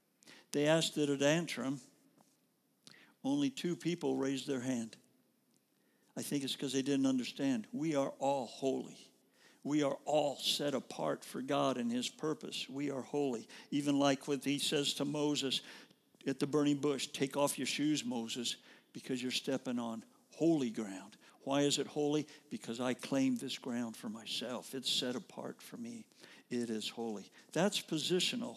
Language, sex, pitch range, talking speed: English, male, 135-230 Hz, 165 wpm